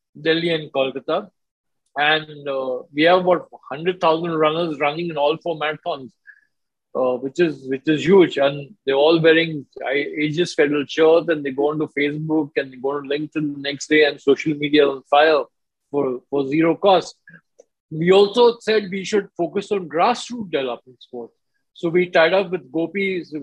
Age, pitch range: 50-69, 145-185 Hz